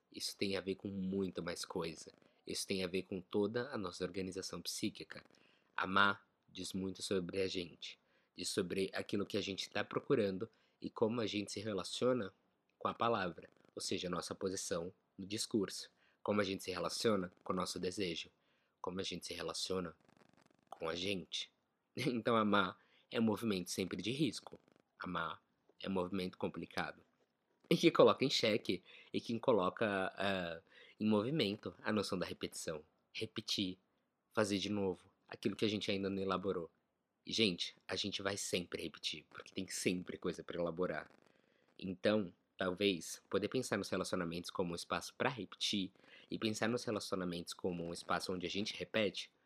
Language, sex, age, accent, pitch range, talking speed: Portuguese, male, 20-39, Brazilian, 90-105 Hz, 165 wpm